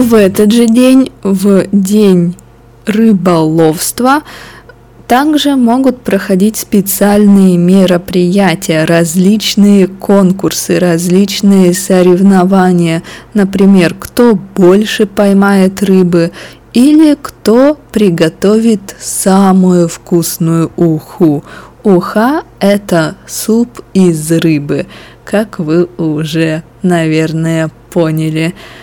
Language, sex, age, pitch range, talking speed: Russian, female, 20-39, 170-210 Hz, 75 wpm